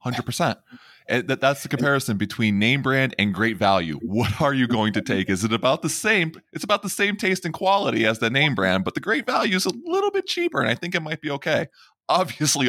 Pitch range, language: 90-120 Hz, English